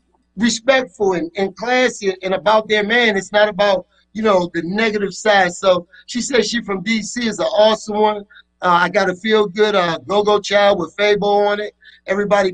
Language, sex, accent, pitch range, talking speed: English, male, American, 190-235 Hz, 185 wpm